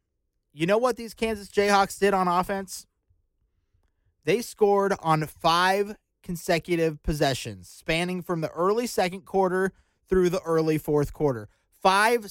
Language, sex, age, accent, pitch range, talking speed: English, male, 30-49, American, 120-195 Hz, 130 wpm